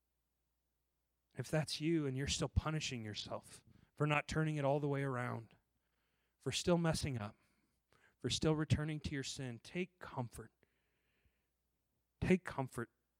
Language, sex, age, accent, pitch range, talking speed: English, male, 30-49, American, 105-155 Hz, 135 wpm